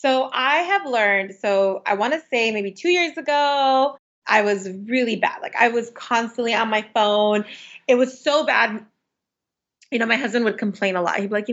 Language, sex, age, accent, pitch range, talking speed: English, female, 20-39, American, 195-235 Hz, 210 wpm